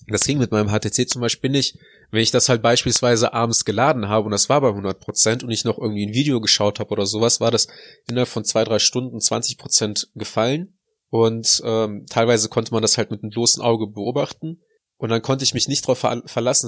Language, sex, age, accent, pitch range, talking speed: German, male, 20-39, German, 110-130 Hz, 215 wpm